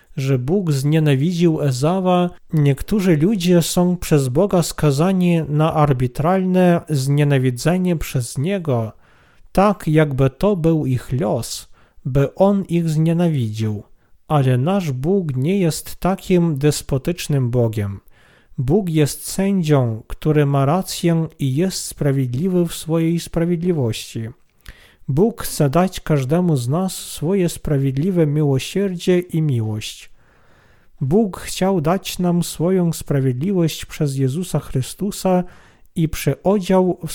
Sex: male